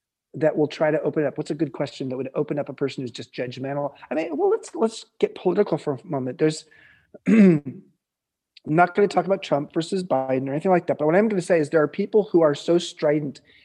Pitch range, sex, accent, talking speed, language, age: 140-180 Hz, male, American, 245 wpm, English, 30-49